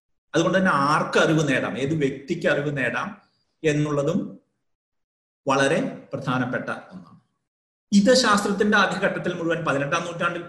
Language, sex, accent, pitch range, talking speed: Malayalam, male, native, 145-185 Hz, 110 wpm